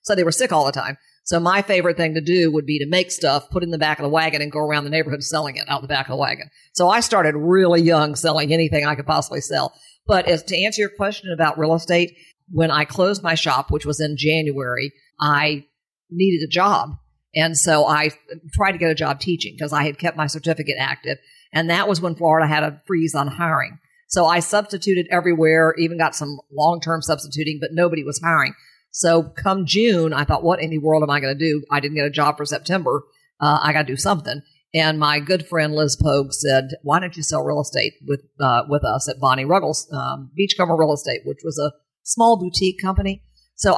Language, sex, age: English, female, 50-69